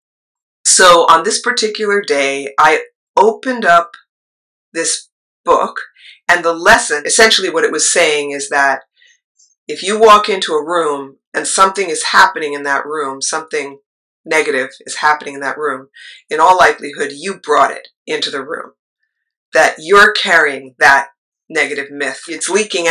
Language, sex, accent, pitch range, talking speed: English, female, American, 145-235 Hz, 150 wpm